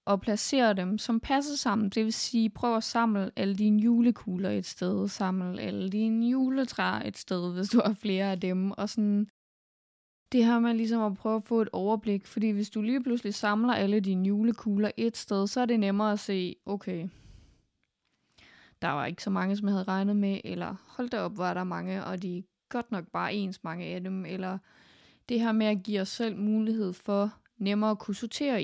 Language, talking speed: Danish, 210 wpm